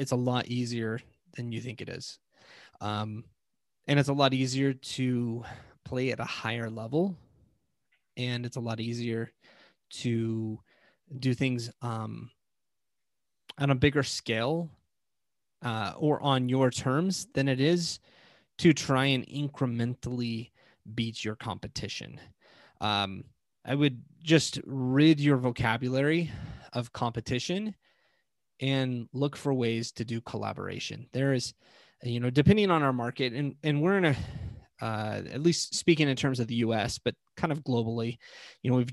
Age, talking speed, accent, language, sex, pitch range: 20-39, 145 wpm, American, English, male, 115-140 Hz